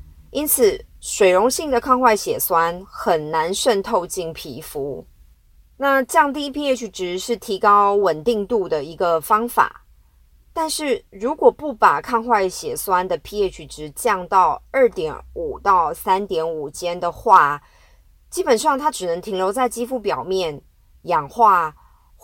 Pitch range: 180-275 Hz